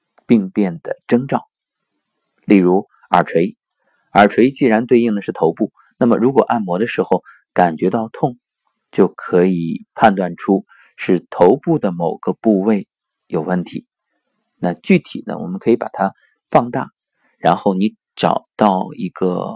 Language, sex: Chinese, male